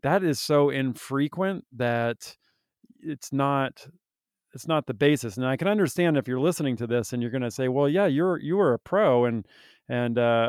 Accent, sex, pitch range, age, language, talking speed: American, male, 120-140 Hz, 40-59, English, 195 wpm